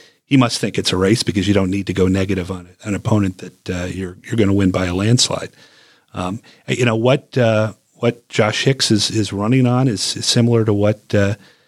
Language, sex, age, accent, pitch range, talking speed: English, male, 40-59, American, 95-120 Hz, 225 wpm